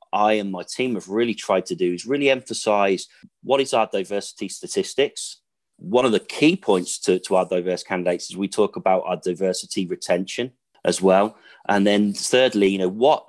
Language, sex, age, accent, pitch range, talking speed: English, male, 30-49, British, 90-120 Hz, 190 wpm